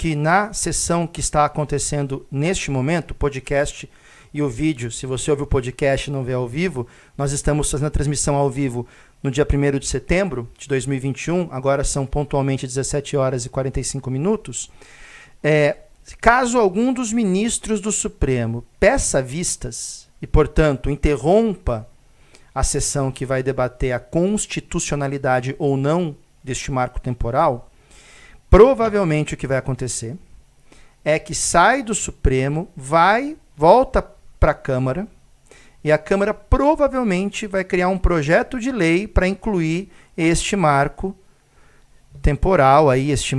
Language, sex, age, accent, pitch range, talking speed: Portuguese, male, 50-69, Brazilian, 135-180 Hz, 140 wpm